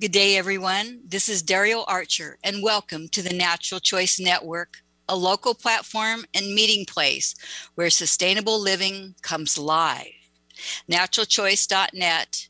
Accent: American